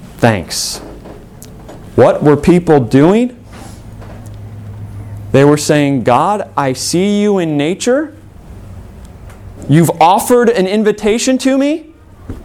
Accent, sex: American, male